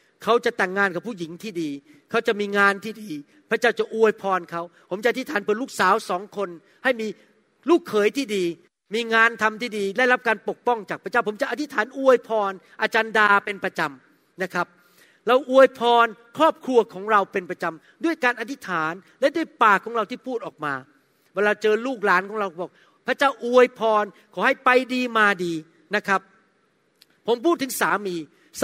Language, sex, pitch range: Thai, male, 200-260 Hz